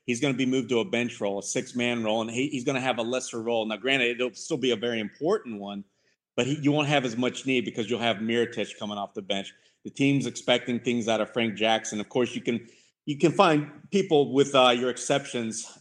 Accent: American